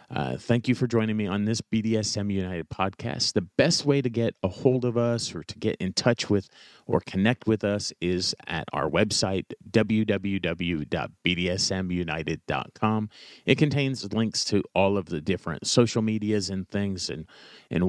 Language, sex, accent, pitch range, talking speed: English, male, American, 95-115 Hz, 165 wpm